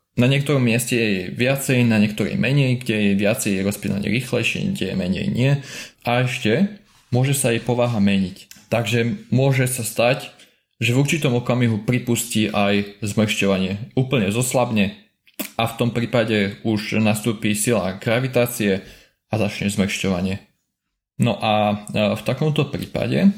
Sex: male